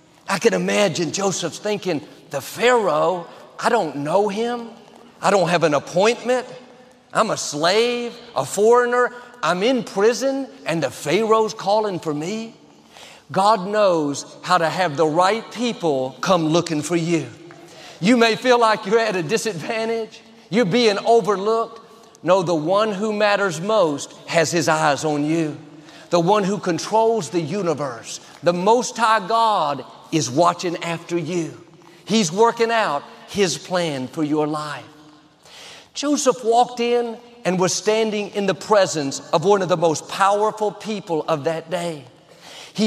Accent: American